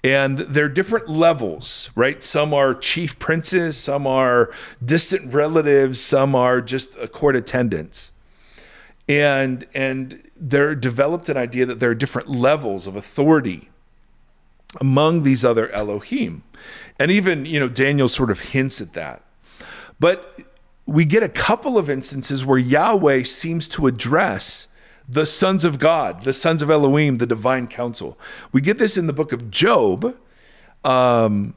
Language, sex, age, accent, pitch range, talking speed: English, male, 40-59, American, 125-155 Hz, 150 wpm